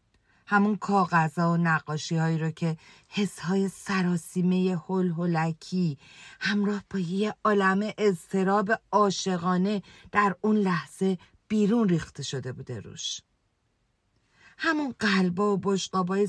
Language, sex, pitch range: Persian, female, 175-255 Hz